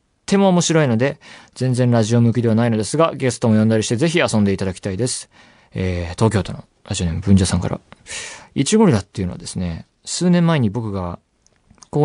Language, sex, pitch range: Japanese, male, 100-150 Hz